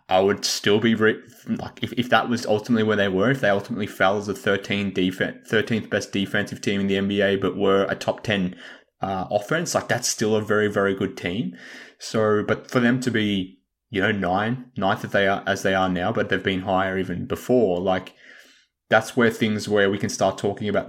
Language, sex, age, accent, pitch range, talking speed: English, male, 20-39, Australian, 95-110 Hz, 220 wpm